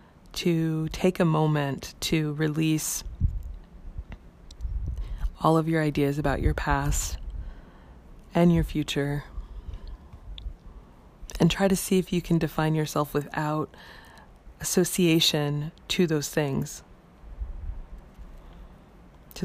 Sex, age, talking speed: female, 20-39, 95 wpm